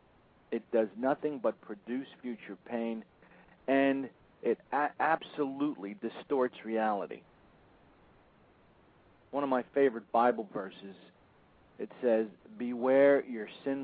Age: 50-69